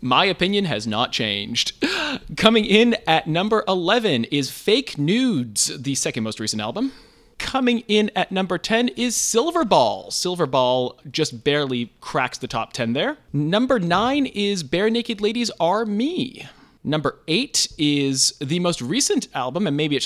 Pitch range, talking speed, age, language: 135-220 Hz, 160 wpm, 30-49, English